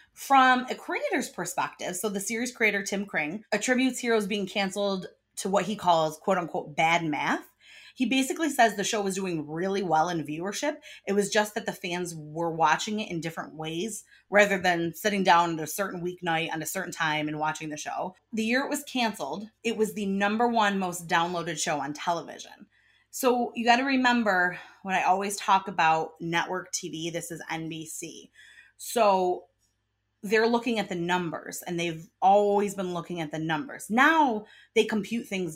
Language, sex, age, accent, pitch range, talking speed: English, female, 30-49, American, 170-225 Hz, 185 wpm